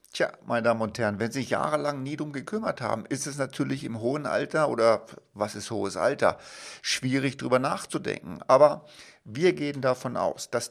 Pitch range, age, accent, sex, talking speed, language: 115-145 Hz, 50-69, German, male, 185 wpm, German